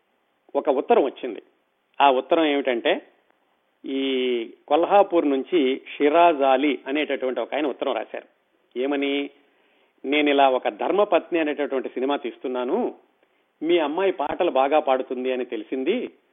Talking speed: 110 wpm